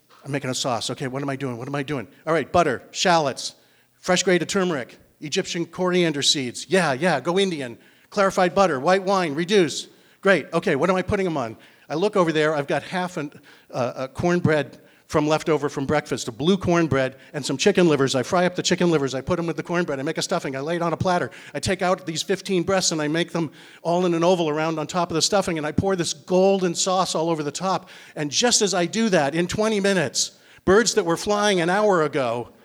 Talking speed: 235 wpm